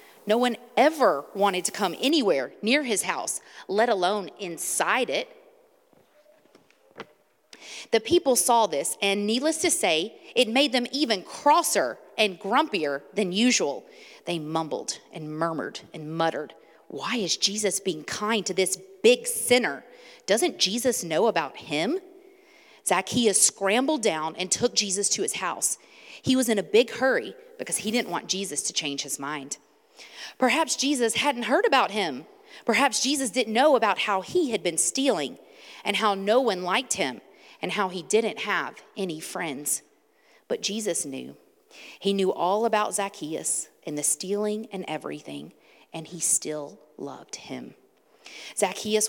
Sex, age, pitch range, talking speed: female, 30-49, 175-255 Hz, 150 wpm